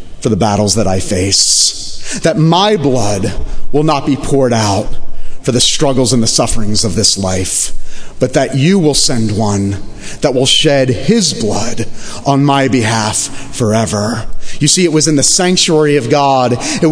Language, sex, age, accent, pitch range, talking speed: English, male, 30-49, American, 105-145 Hz, 170 wpm